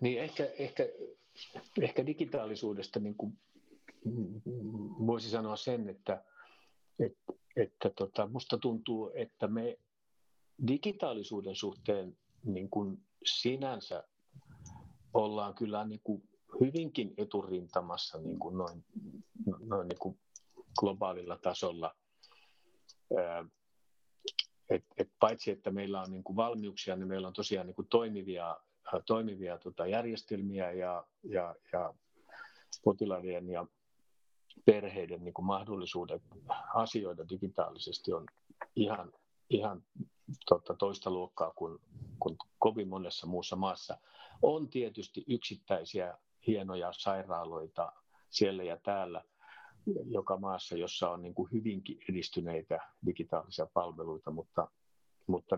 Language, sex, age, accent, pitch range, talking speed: Finnish, male, 50-69, native, 95-115 Hz, 105 wpm